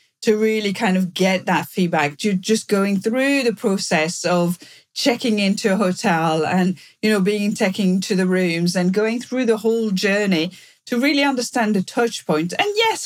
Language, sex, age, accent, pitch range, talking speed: English, female, 40-59, British, 190-240 Hz, 185 wpm